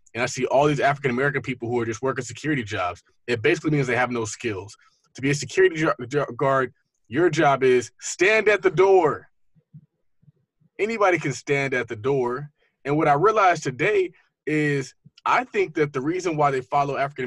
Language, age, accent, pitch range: English, 20-39, American, 120-155 Hz